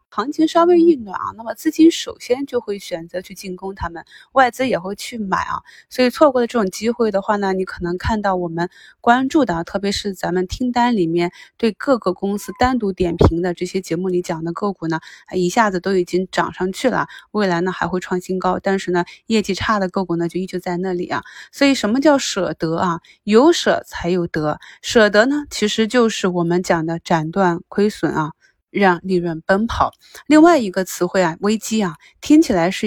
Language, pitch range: Chinese, 175-220 Hz